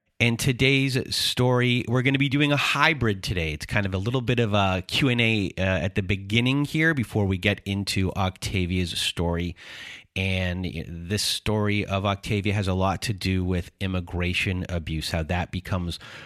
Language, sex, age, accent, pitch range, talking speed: English, male, 30-49, American, 90-105 Hz, 175 wpm